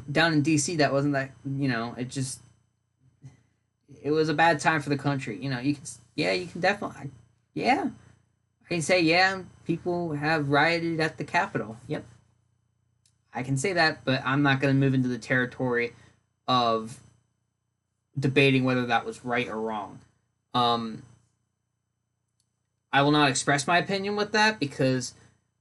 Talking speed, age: 160 wpm, 10-29